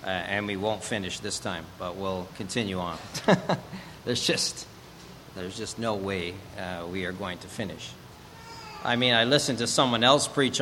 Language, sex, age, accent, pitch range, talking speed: English, male, 40-59, American, 100-130 Hz, 175 wpm